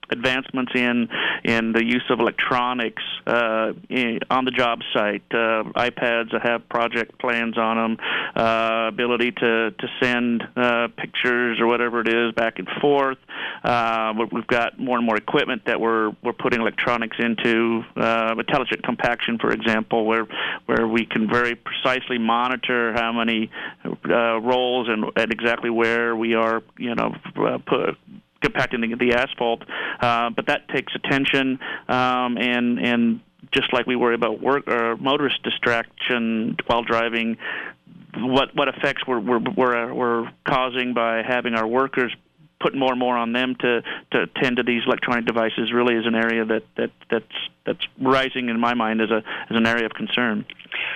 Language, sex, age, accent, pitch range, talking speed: English, male, 40-59, American, 115-125 Hz, 165 wpm